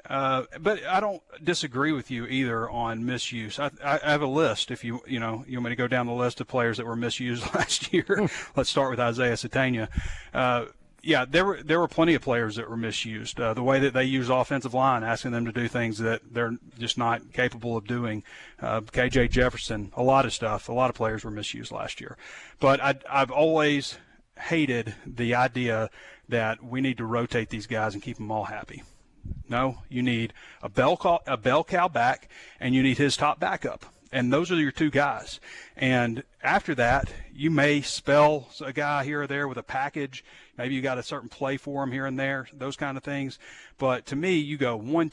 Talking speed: 220 wpm